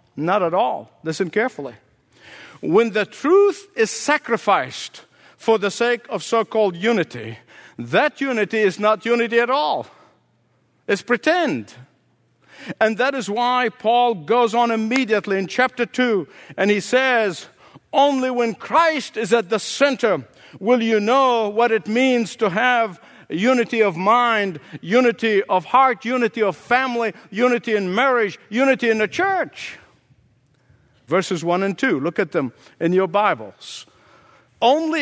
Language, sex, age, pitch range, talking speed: English, male, 60-79, 205-245 Hz, 140 wpm